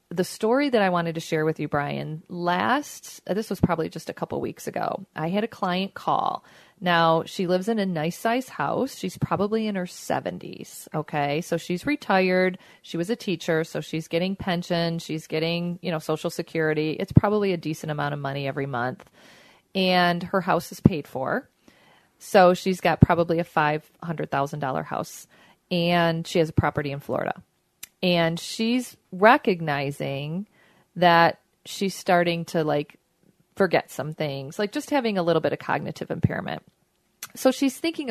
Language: English